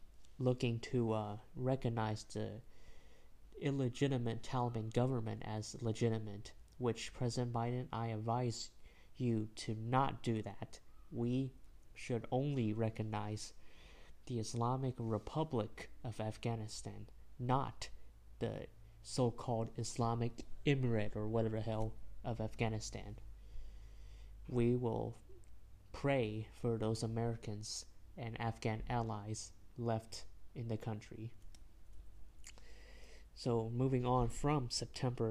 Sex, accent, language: male, American, English